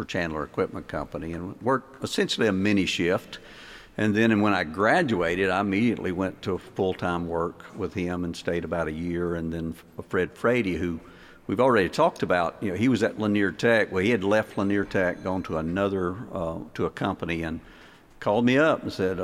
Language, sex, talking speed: English, male, 195 wpm